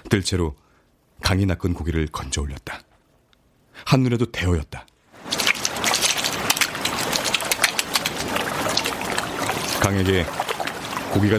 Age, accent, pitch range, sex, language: 40-59, native, 75-90 Hz, male, Korean